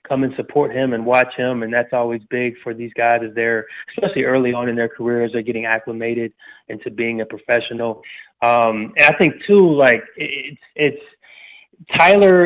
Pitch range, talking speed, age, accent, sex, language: 115-135 Hz, 180 wpm, 20-39, American, male, English